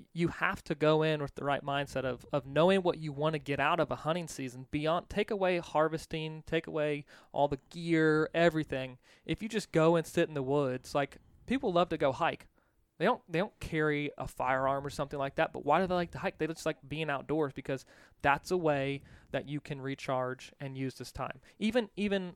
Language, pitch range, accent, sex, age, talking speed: English, 135-160 Hz, American, male, 20-39, 225 wpm